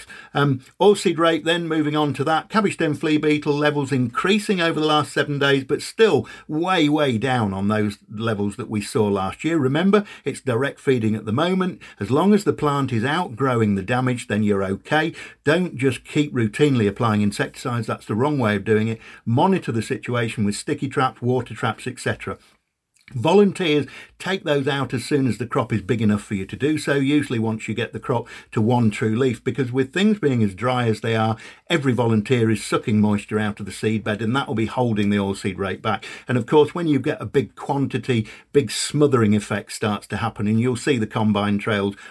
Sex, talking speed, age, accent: male, 215 wpm, 50-69, British